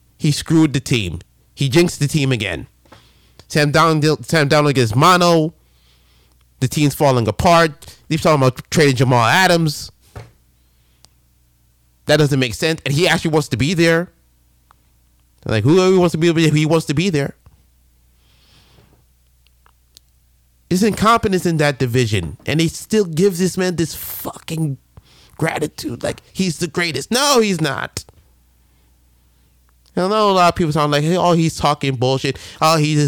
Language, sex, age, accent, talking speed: English, male, 30-49, American, 150 wpm